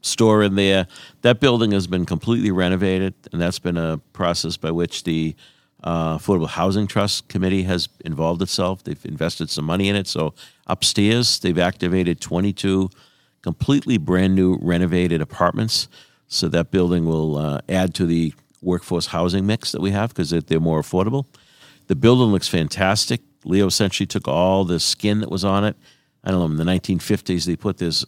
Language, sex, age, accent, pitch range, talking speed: English, male, 50-69, American, 85-105 Hz, 175 wpm